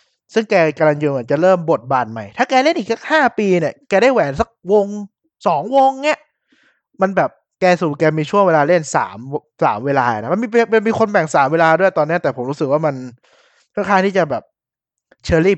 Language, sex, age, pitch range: Thai, male, 20-39, 145-195 Hz